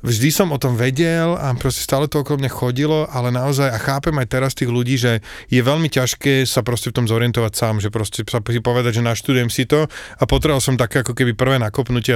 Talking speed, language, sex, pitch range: 225 wpm, Slovak, male, 110-130 Hz